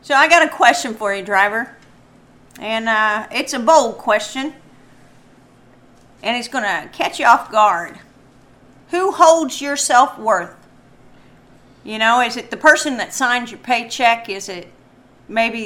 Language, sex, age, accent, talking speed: English, female, 40-59, American, 150 wpm